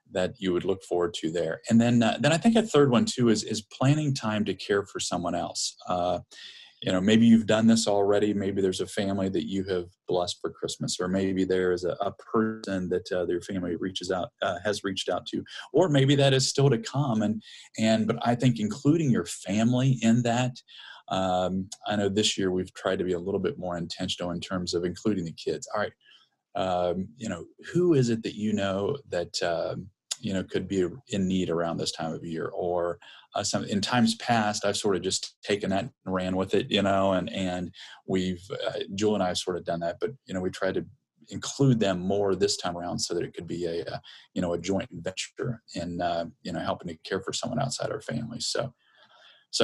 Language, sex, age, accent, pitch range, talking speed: English, male, 30-49, American, 95-115 Hz, 230 wpm